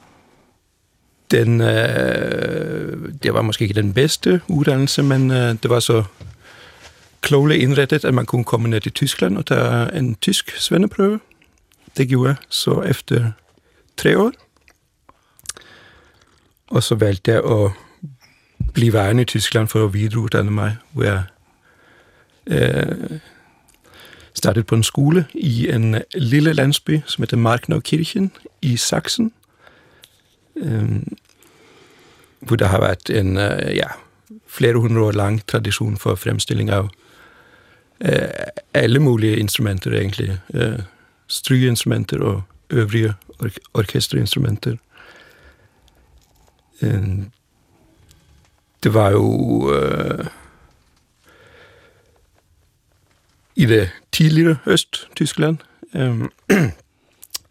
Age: 60-79